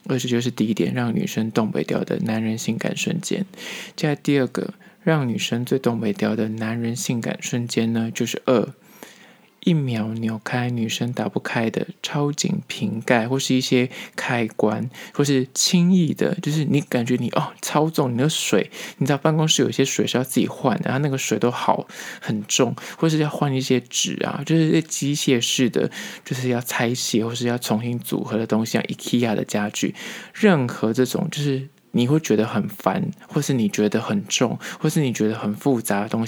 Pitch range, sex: 115-160 Hz, male